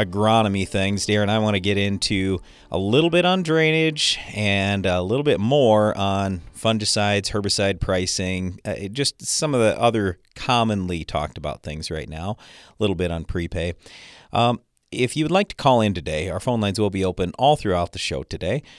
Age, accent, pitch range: 40-59, American, 90-120 Hz